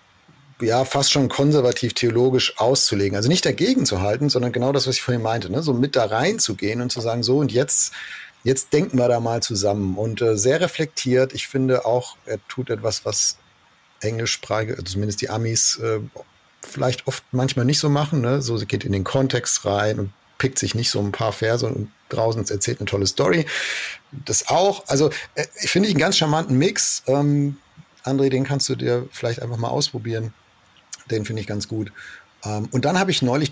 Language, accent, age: German, German, 40-59